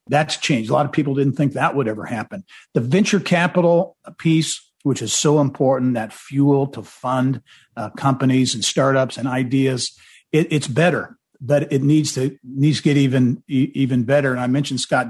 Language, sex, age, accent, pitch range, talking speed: English, male, 50-69, American, 125-145 Hz, 185 wpm